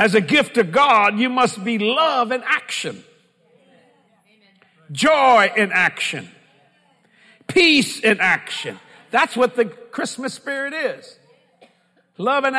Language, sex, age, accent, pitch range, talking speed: English, male, 50-69, American, 195-255 Hz, 120 wpm